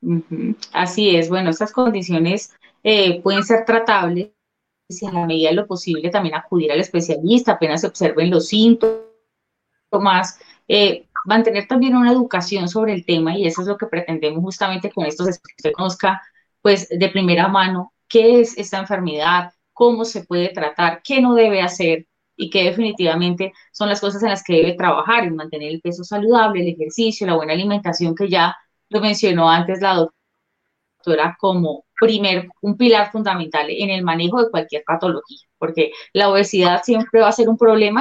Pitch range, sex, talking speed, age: 175-220 Hz, female, 175 wpm, 20-39